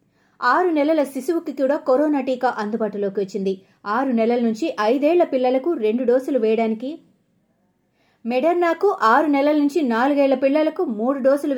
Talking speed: 120 wpm